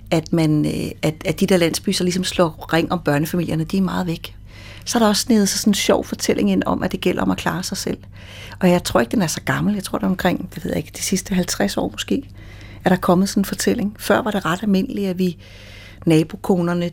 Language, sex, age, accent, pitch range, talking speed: Danish, female, 30-49, native, 150-195 Hz, 250 wpm